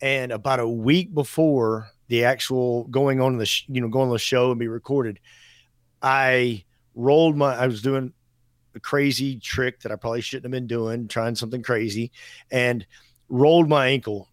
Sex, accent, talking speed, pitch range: male, American, 180 wpm, 115-135 Hz